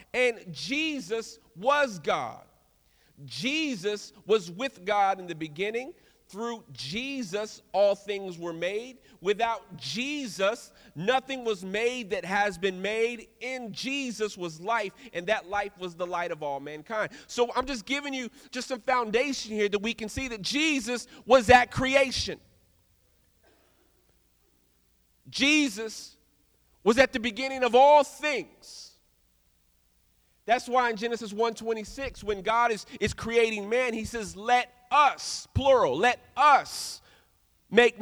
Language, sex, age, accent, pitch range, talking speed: English, male, 40-59, American, 180-245 Hz, 135 wpm